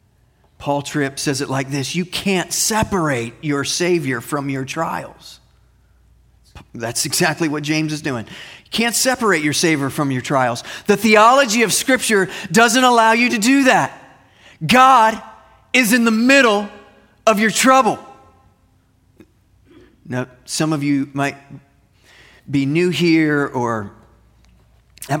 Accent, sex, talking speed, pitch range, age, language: American, male, 135 wpm, 120-170 Hz, 30-49, English